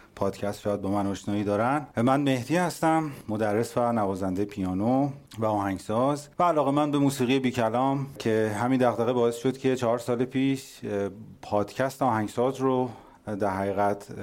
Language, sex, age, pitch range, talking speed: Persian, male, 40-59, 105-130 Hz, 150 wpm